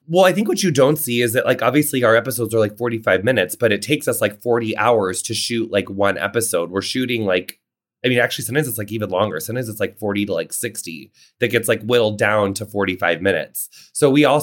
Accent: American